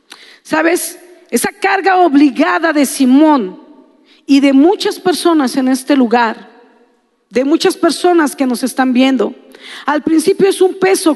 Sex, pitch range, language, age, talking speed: female, 260-330 Hz, Spanish, 40-59, 135 wpm